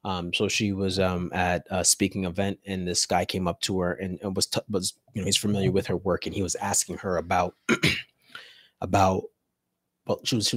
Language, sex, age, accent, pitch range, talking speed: English, male, 30-49, American, 95-110 Hz, 220 wpm